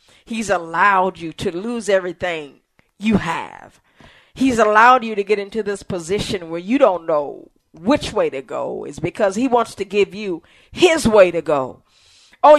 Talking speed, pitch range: 170 wpm, 175-245 Hz